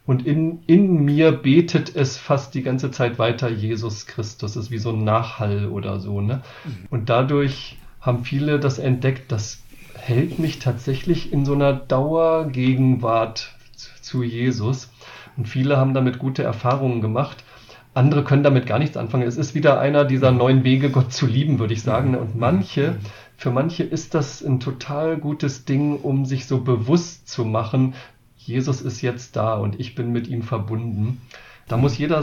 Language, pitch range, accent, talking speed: German, 115-135 Hz, German, 175 wpm